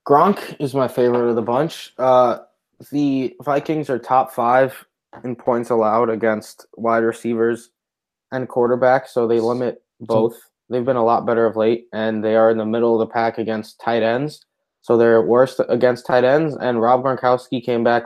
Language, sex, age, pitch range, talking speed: English, male, 20-39, 110-125 Hz, 185 wpm